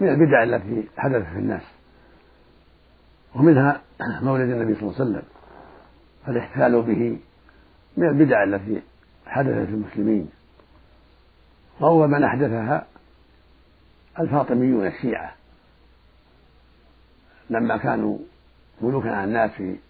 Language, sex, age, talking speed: Arabic, male, 60-79, 95 wpm